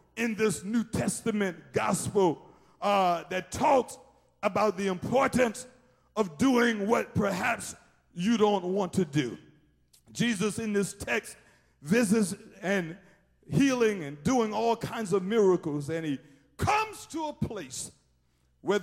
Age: 50-69